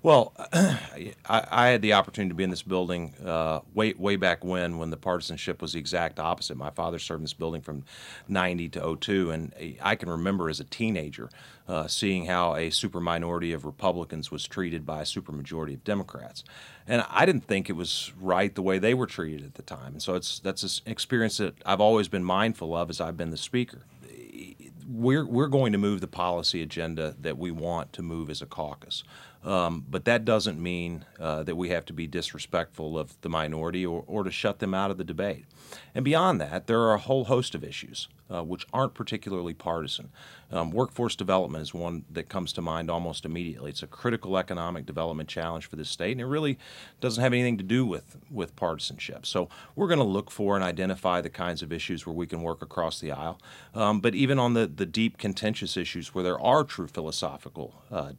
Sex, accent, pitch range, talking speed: male, American, 80-105 Hz, 215 wpm